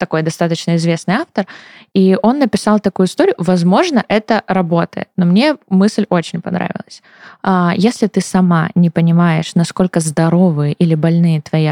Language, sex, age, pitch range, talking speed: Russian, female, 20-39, 170-210 Hz, 140 wpm